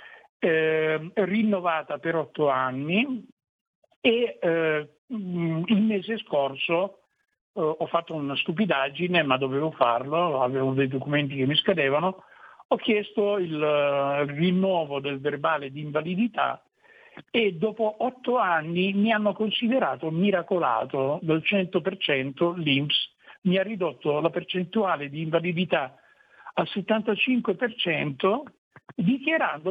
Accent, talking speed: native, 110 wpm